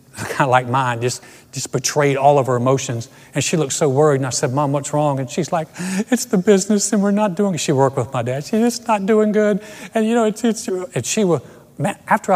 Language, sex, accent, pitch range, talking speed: English, male, American, 130-185 Hz, 250 wpm